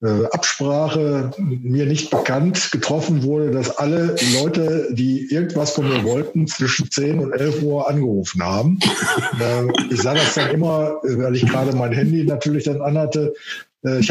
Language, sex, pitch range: German, male, 130-155 Hz